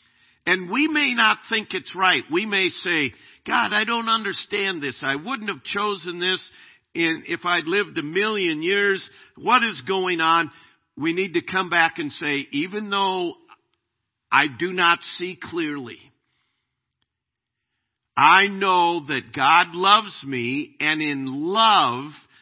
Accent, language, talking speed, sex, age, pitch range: American, English, 140 wpm, male, 50-69, 150-195 Hz